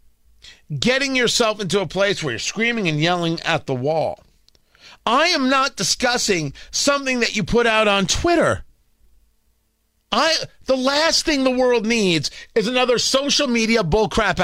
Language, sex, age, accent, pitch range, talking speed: English, male, 40-59, American, 170-250 Hz, 150 wpm